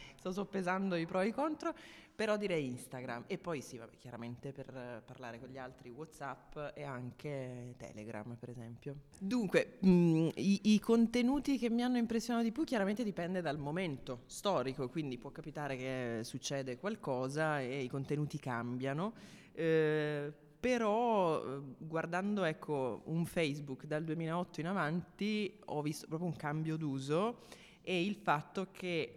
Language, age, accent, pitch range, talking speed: Italian, 20-39, native, 135-175 Hz, 150 wpm